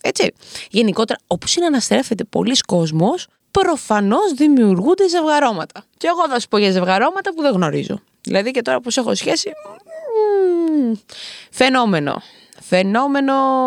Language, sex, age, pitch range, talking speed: Greek, female, 20-39, 200-270 Hz, 125 wpm